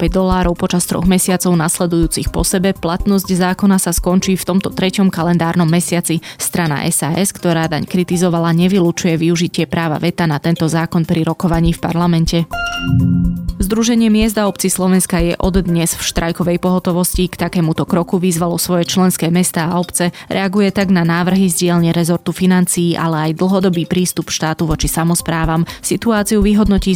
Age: 20-39